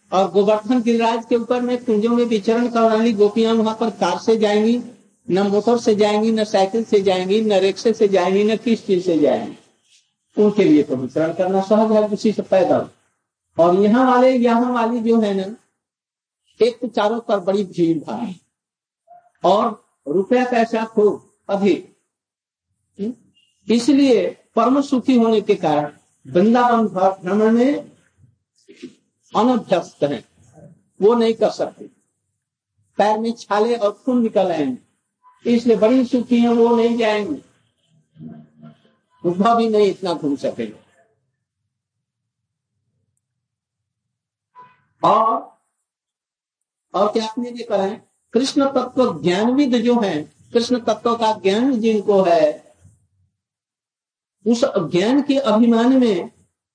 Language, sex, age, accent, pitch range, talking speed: Hindi, male, 60-79, native, 180-235 Hz, 115 wpm